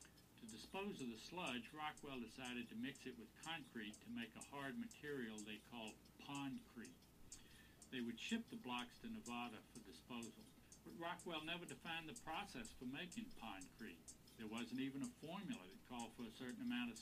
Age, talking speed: 60-79, 175 wpm